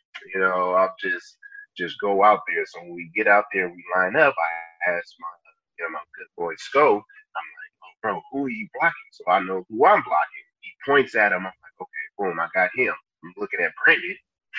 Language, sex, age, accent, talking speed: English, male, 20-39, American, 220 wpm